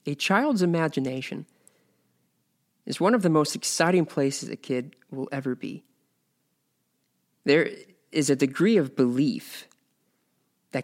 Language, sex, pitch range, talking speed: English, male, 125-155 Hz, 120 wpm